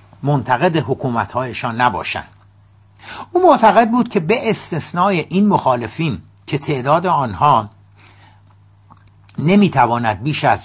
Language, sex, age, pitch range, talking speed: Persian, male, 60-79, 105-150 Hz, 95 wpm